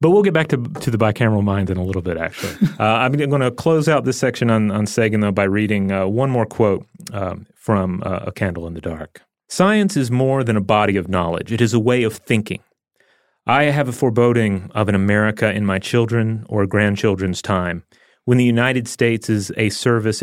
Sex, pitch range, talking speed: male, 100-120 Hz, 220 wpm